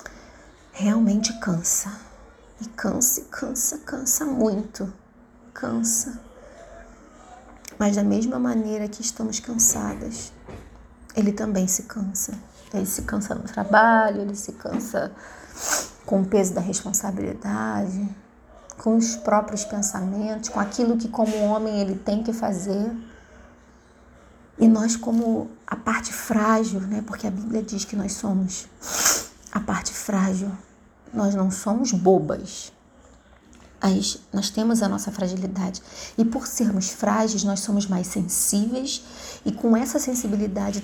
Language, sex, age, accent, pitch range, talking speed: Portuguese, female, 30-49, Brazilian, 200-230 Hz, 125 wpm